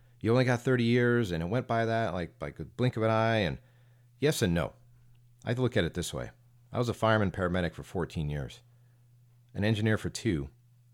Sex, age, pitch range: male, 40-59, 85-120 Hz